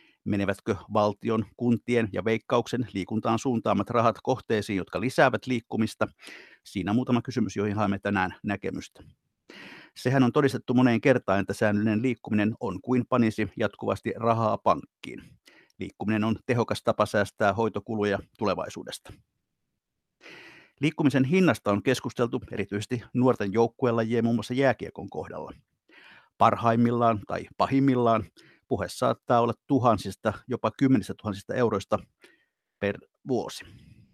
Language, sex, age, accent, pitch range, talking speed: Finnish, male, 50-69, native, 110-125 Hz, 115 wpm